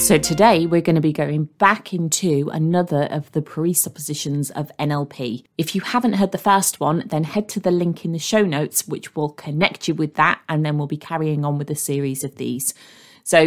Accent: British